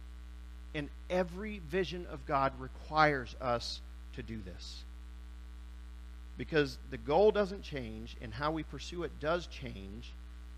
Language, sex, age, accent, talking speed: English, male, 50-69, American, 125 wpm